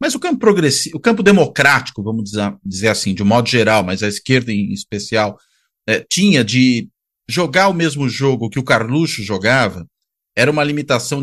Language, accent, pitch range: Portuguese, Brazilian, 115-150 Hz